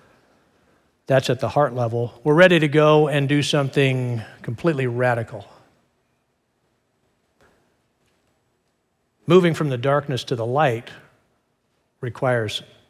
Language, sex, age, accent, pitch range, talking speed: English, male, 50-69, American, 120-155 Hz, 100 wpm